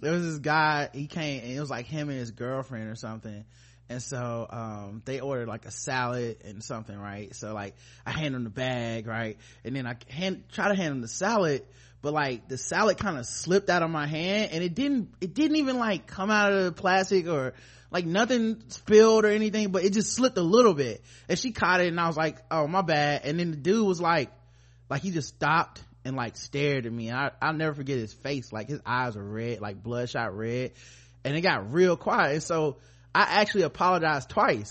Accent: American